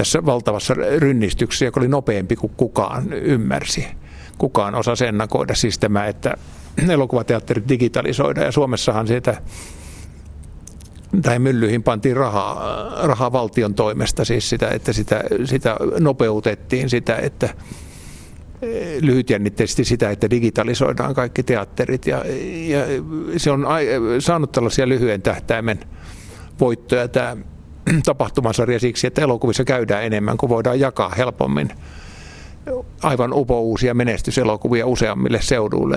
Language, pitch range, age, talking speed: Finnish, 100-130 Hz, 50-69, 110 wpm